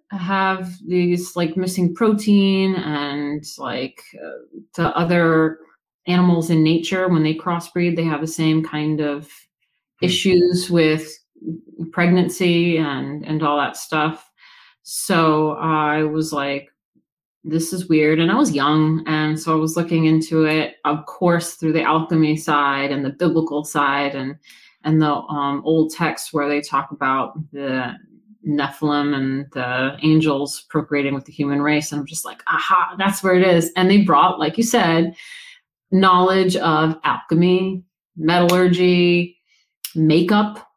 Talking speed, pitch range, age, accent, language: 145 wpm, 155-185 Hz, 30-49, American, English